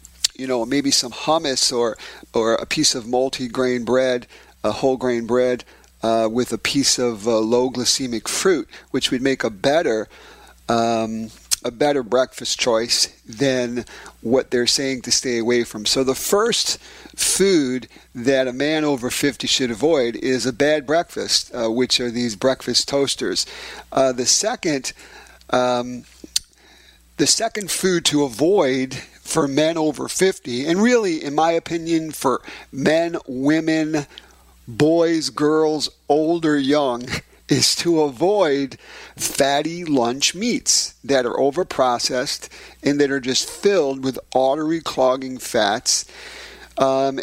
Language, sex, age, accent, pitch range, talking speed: English, male, 50-69, American, 125-155 Hz, 135 wpm